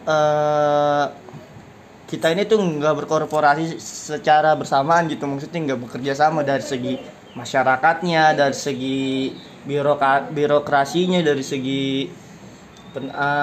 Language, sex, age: Indonesian, male, 20-39